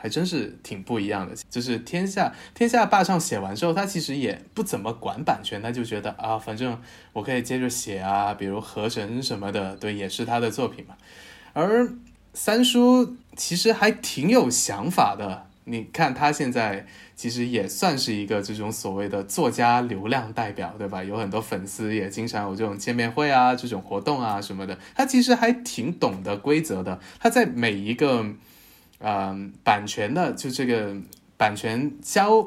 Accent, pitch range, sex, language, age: native, 100-145 Hz, male, Chinese, 20-39